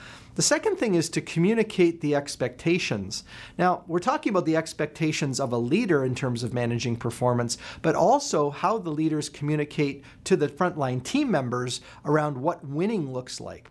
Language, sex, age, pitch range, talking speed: English, male, 40-59, 135-185 Hz, 165 wpm